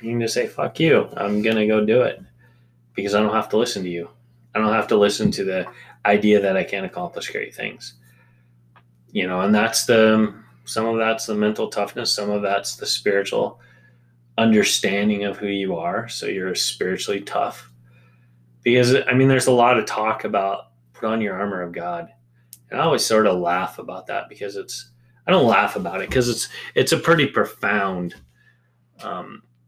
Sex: male